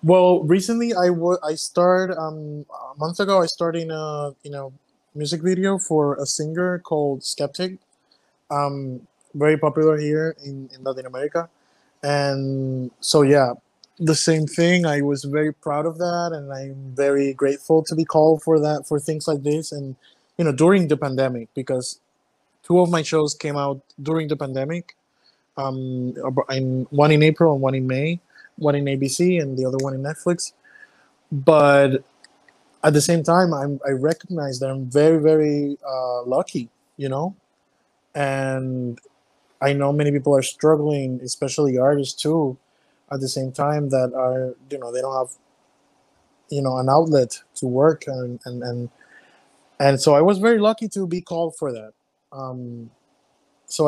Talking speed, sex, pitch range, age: 165 wpm, male, 135-160 Hz, 20-39